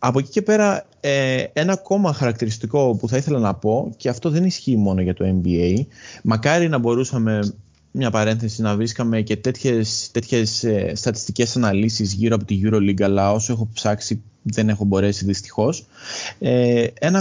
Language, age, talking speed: Greek, 20-39, 160 wpm